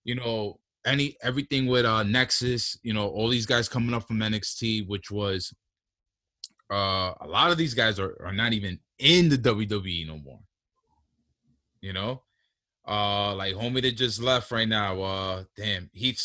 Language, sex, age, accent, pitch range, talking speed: English, male, 20-39, American, 100-130 Hz, 170 wpm